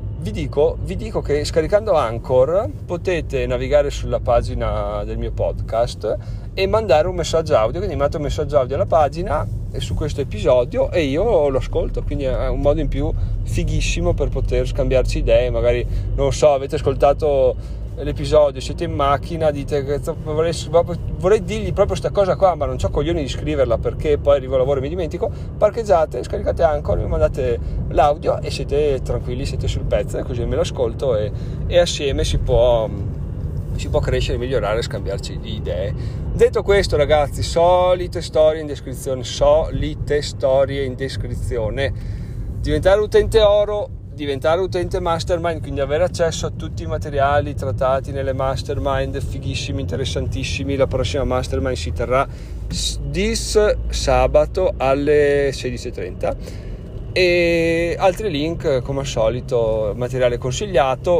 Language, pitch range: Italian, 110-150 Hz